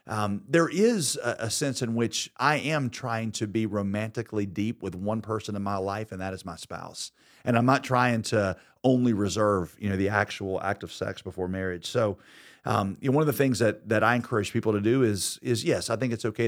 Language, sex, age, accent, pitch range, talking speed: English, male, 40-59, American, 100-120 Hz, 235 wpm